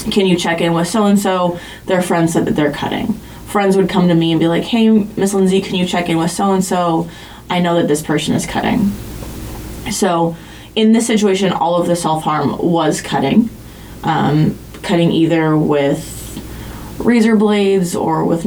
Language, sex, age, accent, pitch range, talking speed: English, female, 20-39, American, 160-200 Hz, 180 wpm